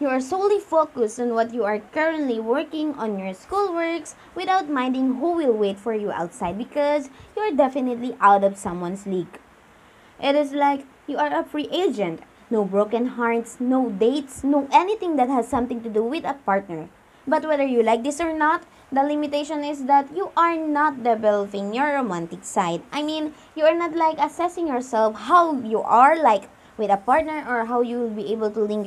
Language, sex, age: English, female, 20-39